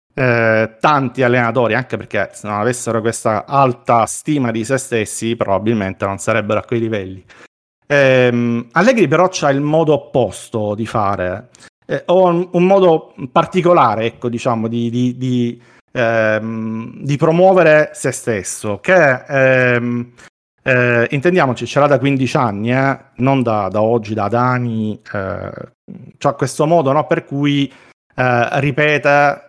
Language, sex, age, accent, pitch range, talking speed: Italian, male, 40-59, native, 115-140 Hz, 140 wpm